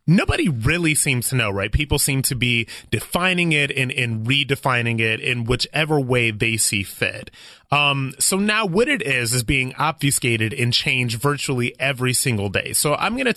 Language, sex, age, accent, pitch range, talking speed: English, male, 30-49, American, 115-150 Hz, 185 wpm